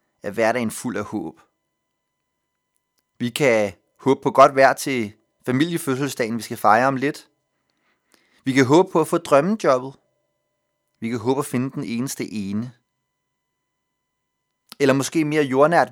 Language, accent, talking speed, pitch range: Danish, native, 145 wpm, 120-150 Hz